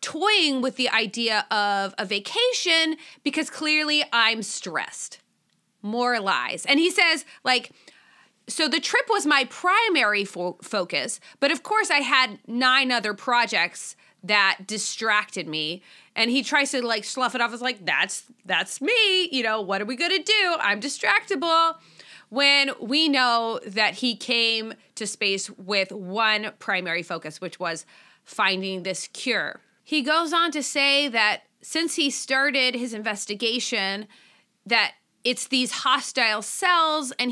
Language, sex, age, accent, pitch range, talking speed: English, female, 30-49, American, 210-285 Hz, 150 wpm